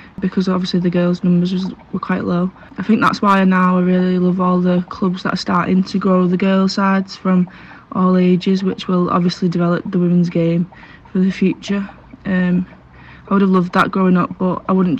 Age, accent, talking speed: 20-39, British, 205 wpm